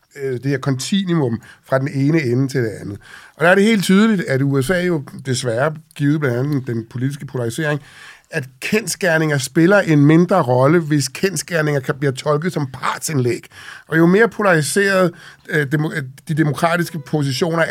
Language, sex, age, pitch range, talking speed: Danish, male, 60-79, 135-170 Hz, 165 wpm